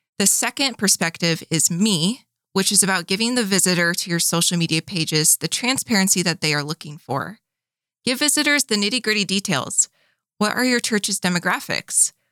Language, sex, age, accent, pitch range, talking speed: English, female, 20-39, American, 170-220 Hz, 165 wpm